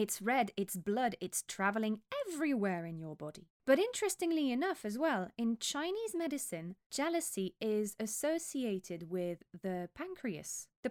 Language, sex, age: English, female, 20-39